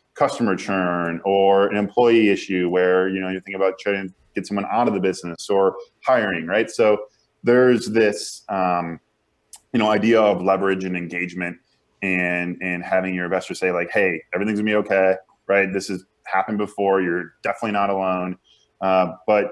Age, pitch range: 20-39, 90-105 Hz